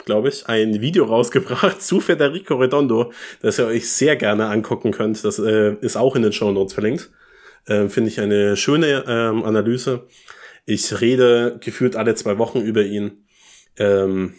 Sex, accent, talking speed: male, German, 165 wpm